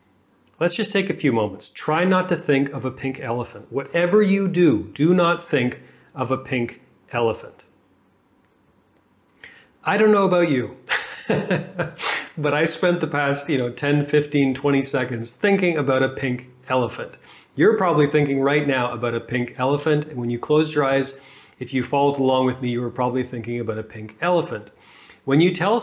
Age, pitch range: 40-59, 125-165 Hz